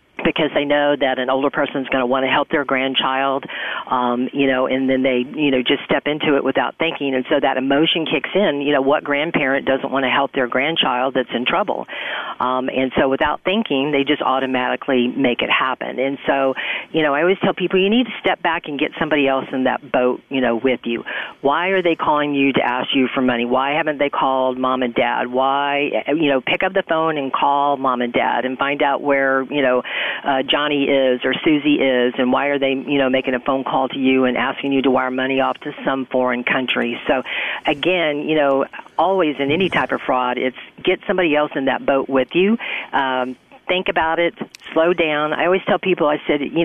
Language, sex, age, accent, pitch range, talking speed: English, female, 40-59, American, 130-155 Hz, 230 wpm